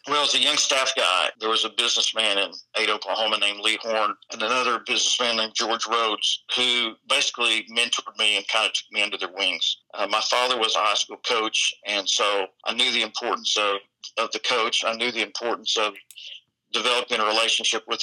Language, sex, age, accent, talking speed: English, male, 50-69, American, 205 wpm